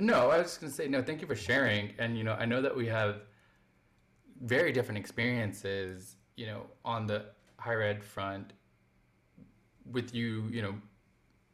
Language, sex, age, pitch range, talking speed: English, male, 20-39, 100-115 Hz, 170 wpm